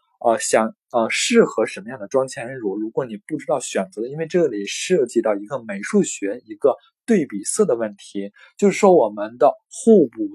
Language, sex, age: Chinese, male, 20-39